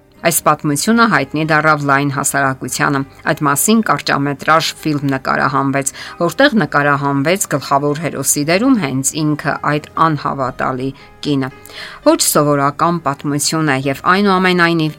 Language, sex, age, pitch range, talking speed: English, female, 50-69, 140-170 Hz, 110 wpm